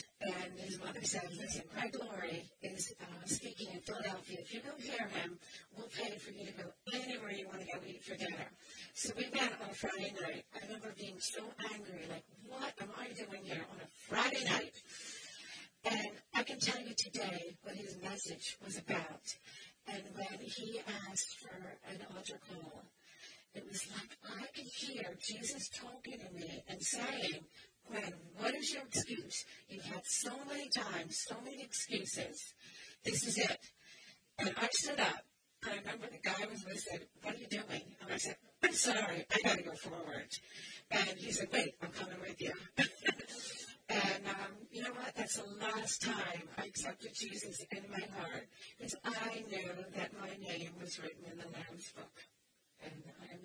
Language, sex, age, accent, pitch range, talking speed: English, female, 40-59, American, 185-230 Hz, 185 wpm